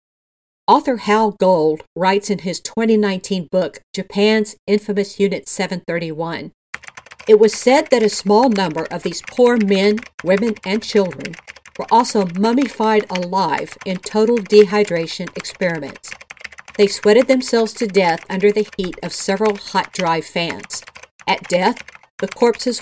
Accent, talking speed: American, 135 wpm